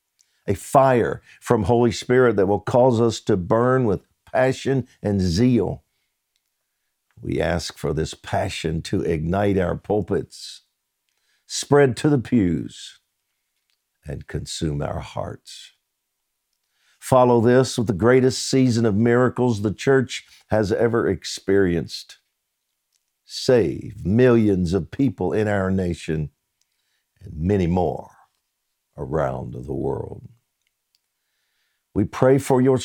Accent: American